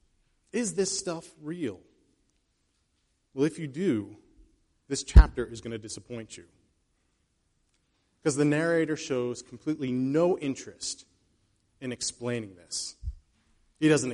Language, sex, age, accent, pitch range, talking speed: English, male, 30-49, American, 130-190 Hz, 115 wpm